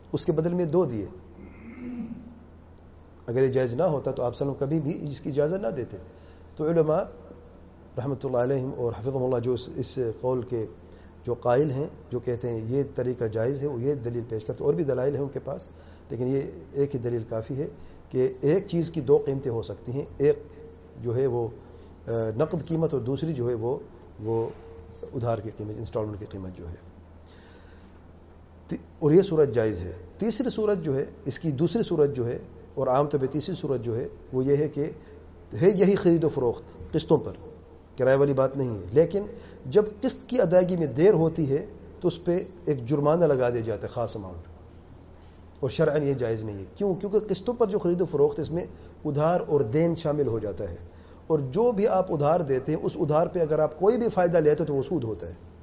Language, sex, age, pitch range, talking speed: English, male, 40-59, 95-155 Hz, 185 wpm